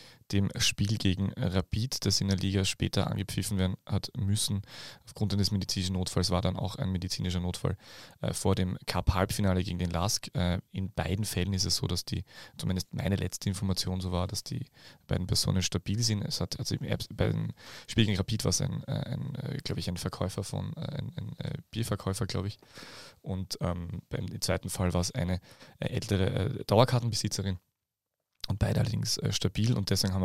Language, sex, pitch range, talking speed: German, male, 95-115 Hz, 175 wpm